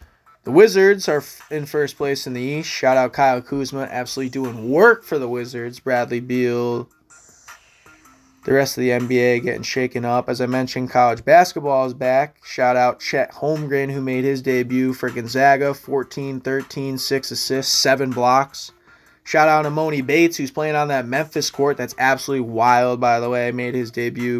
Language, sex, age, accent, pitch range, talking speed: English, male, 20-39, American, 125-145 Hz, 170 wpm